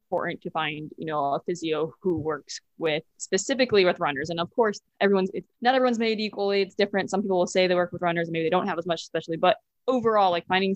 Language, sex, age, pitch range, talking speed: English, female, 20-39, 170-205 Hz, 245 wpm